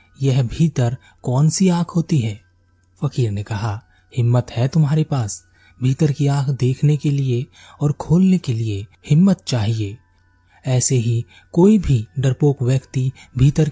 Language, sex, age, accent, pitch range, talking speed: Hindi, male, 30-49, native, 110-150 Hz, 145 wpm